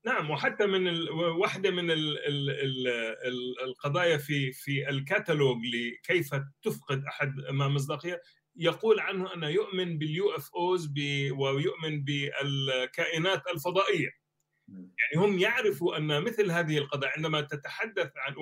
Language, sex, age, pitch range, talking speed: Arabic, male, 30-49, 145-195 Hz, 100 wpm